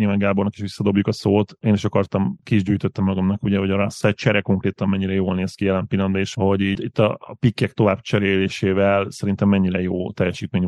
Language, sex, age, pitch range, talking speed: Hungarian, male, 30-49, 95-105 Hz, 200 wpm